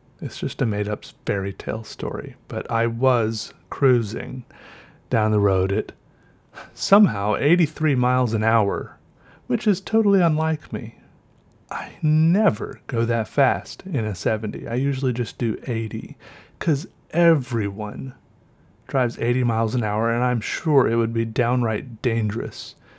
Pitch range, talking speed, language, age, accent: 110-135 Hz, 140 wpm, English, 30-49, American